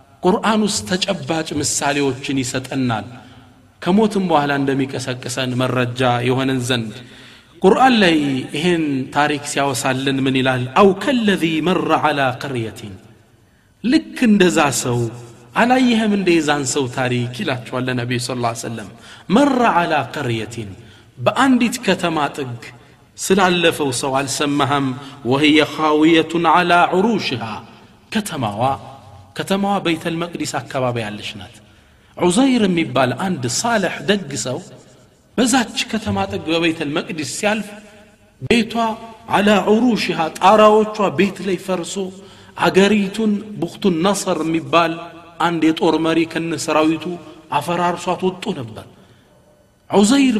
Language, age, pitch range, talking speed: Amharic, 40-59, 130-195 Hz, 105 wpm